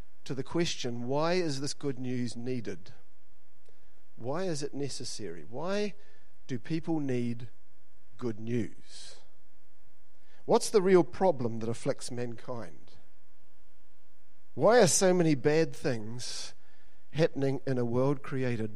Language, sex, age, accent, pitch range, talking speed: English, male, 50-69, Australian, 115-150 Hz, 120 wpm